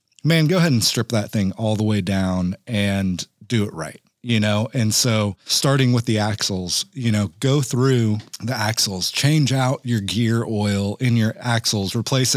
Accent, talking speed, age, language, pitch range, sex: American, 185 wpm, 30-49, English, 105-130 Hz, male